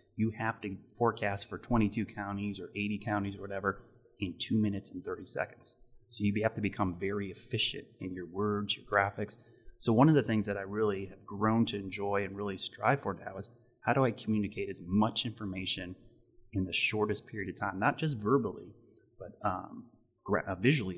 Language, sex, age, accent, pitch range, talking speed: English, male, 30-49, American, 100-120 Hz, 195 wpm